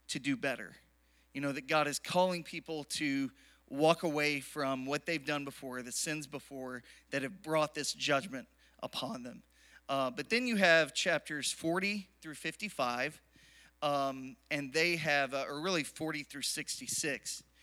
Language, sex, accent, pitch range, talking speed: English, male, American, 135-160 Hz, 160 wpm